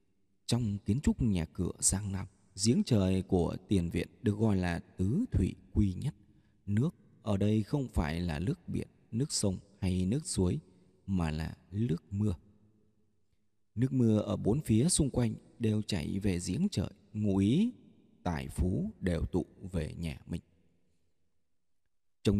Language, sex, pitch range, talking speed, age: Vietnamese, male, 90-120 Hz, 155 wpm, 20-39